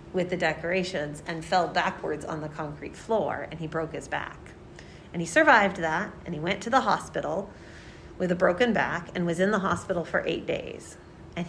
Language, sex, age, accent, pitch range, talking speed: English, female, 40-59, American, 165-195 Hz, 200 wpm